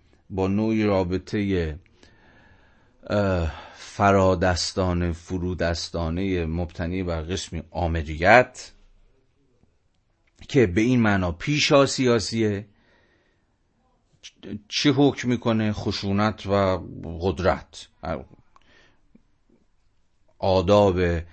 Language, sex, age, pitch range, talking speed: Persian, male, 40-59, 85-105 Hz, 60 wpm